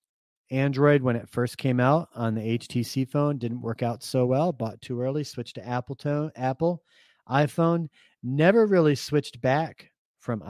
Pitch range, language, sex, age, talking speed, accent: 110-140 Hz, English, male, 30-49, 165 wpm, American